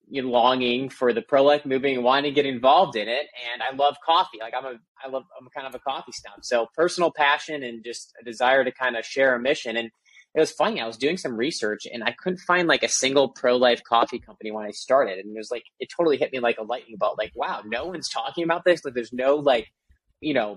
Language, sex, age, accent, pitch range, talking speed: English, male, 20-39, American, 115-145 Hz, 255 wpm